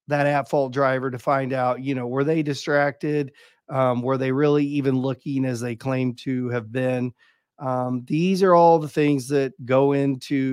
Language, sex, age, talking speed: English, male, 40-59, 180 wpm